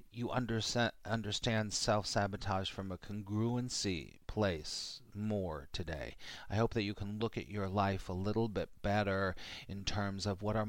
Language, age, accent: English, 40-59, American